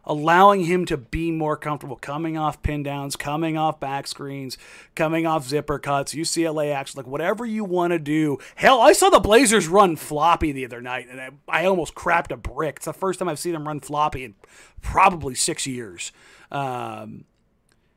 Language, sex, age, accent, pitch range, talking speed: English, male, 30-49, American, 140-185 Hz, 190 wpm